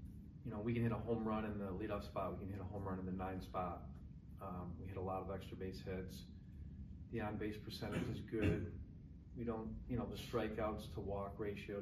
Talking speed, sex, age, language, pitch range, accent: 230 wpm, male, 40-59, English, 95-110 Hz, American